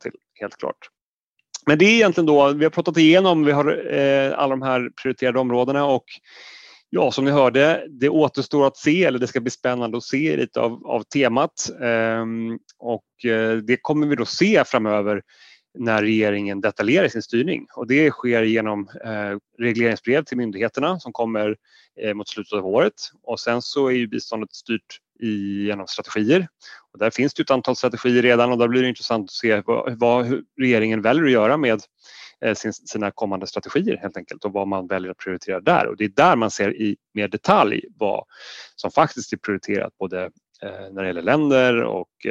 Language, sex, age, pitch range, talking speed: Swedish, male, 30-49, 110-145 Hz, 190 wpm